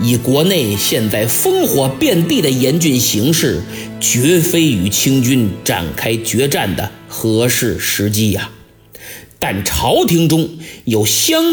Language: Chinese